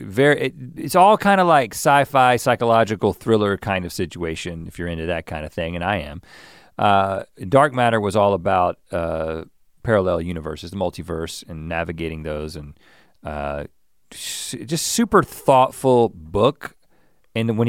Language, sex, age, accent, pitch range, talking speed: English, male, 40-59, American, 85-115 Hz, 155 wpm